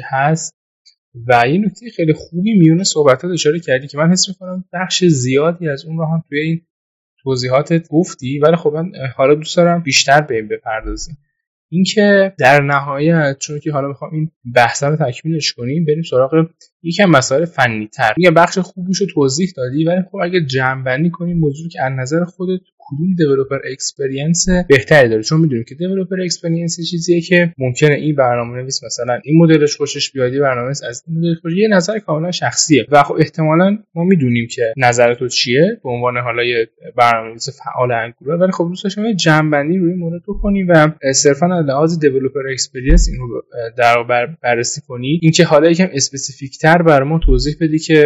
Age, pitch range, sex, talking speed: 10-29, 130-170 Hz, male, 135 wpm